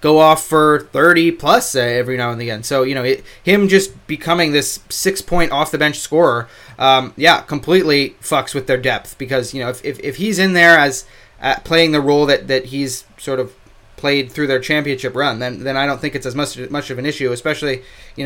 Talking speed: 225 wpm